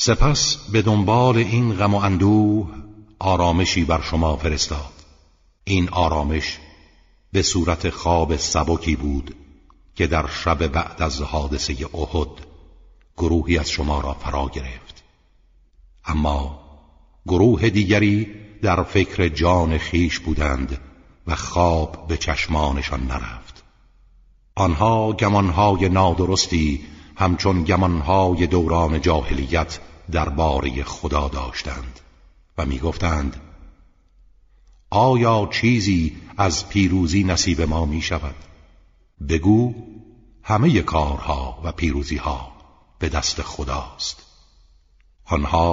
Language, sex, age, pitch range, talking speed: Persian, male, 60-79, 75-95 Hz, 95 wpm